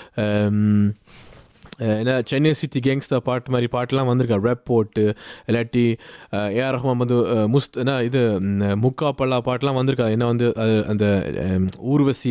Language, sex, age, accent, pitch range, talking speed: Tamil, male, 20-39, native, 115-140 Hz, 125 wpm